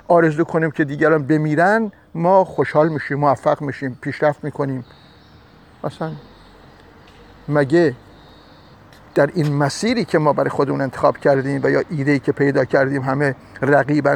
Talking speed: 130 wpm